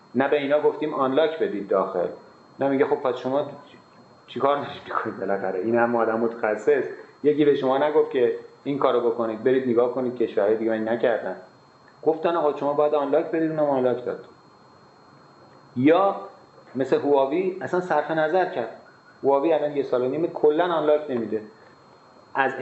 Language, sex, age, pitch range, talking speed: Persian, male, 30-49, 115-160 Hz, 160 wpm